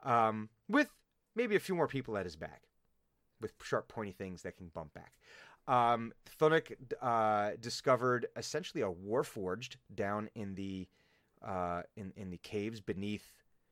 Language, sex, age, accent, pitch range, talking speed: English, male, 30-49, American, 105-130 Hz, 155 wpm